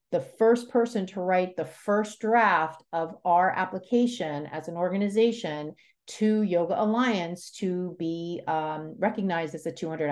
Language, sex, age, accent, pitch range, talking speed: English, female, 40-59, American, 170-235 Hz, 140 wpm